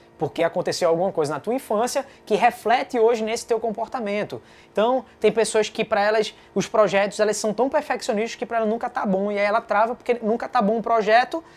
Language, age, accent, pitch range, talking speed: Portuguese, 20-39, Brazilian, 190-250 Hz, 220 wpm